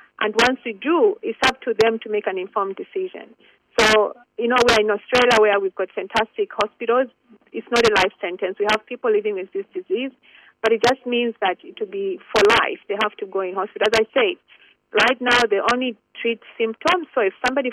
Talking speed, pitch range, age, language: 215 wpm, 210-270 Hz, 40-59, English